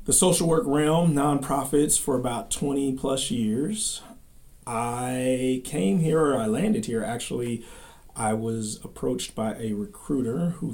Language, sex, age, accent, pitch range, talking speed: English, male, 40-59, American, 100-130 Hz, 140 wpm